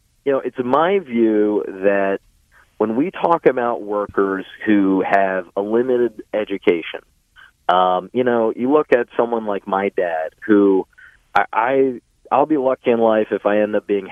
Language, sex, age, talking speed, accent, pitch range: English, male, 40-59, 165 wpm, American, 105-150 Hz